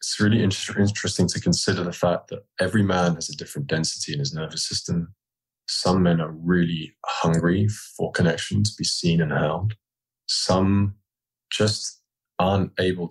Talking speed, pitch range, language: 155 wpm, 80-105 Hz, English